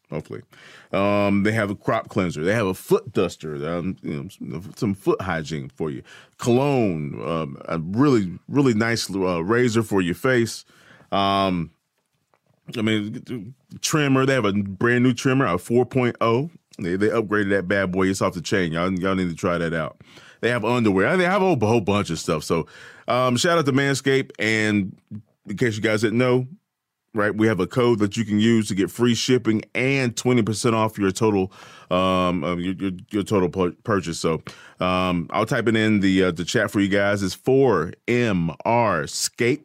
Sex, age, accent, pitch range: male, 30-49, American, 95-120 Hz